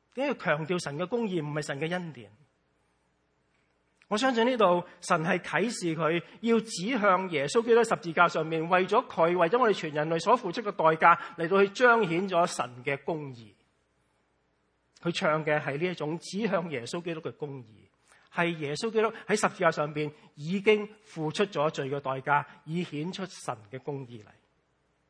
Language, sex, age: English, male, 40-59